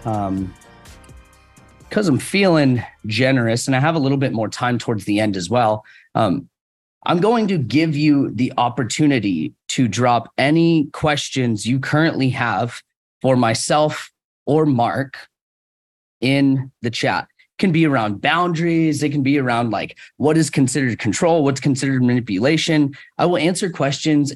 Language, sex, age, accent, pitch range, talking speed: English, male, 30-49, American, 115-150 Hz, 150 wpm